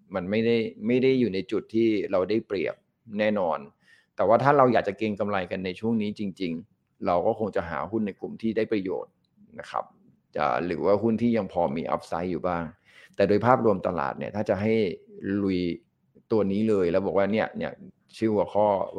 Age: 20-39